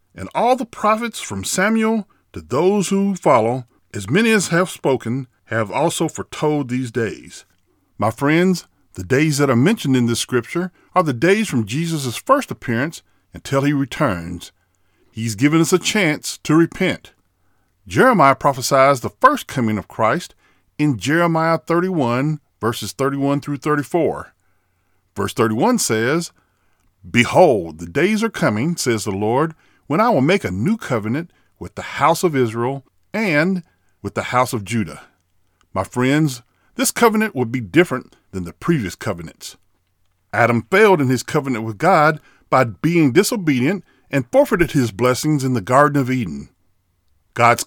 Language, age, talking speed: English, 50-69, 150 wpm